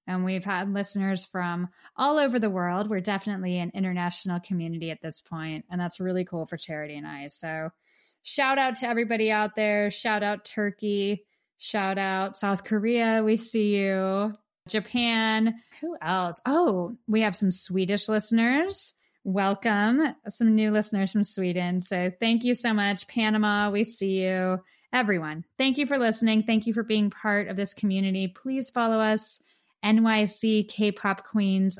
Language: English